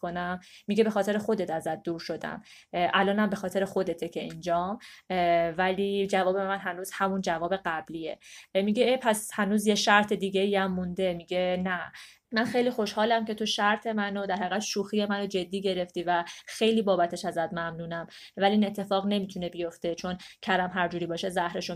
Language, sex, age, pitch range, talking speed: Persian, female, 20-39, 180-220 Hz, 165 wpm